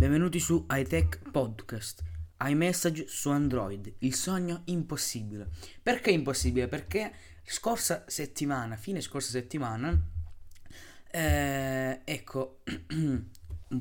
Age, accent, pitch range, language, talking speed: 20-39, native, 100-135 Hz, Italian, 90 wpm